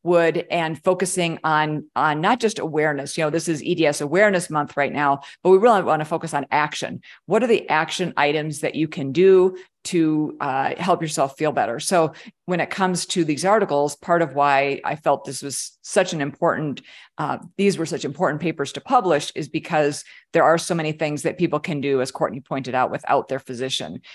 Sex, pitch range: female, 145-175 Hz